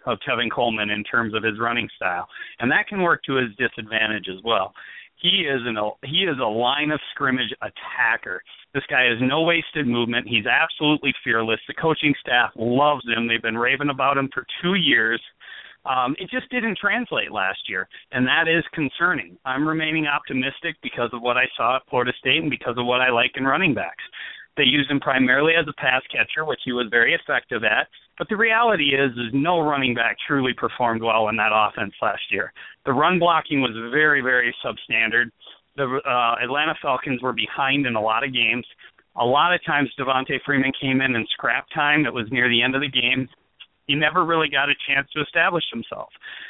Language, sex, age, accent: English, male, 40-59, American